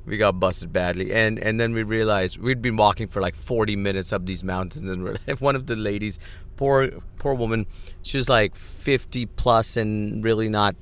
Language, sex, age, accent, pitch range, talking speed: English, male, 40-59, American, 100-135 Hz, 205 wpm